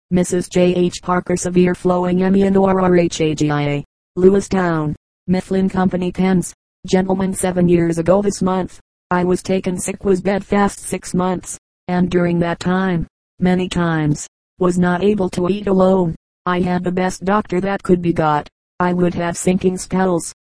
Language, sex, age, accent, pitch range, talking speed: English, female, 40-59, American, 180-195 Hz, 165 wpm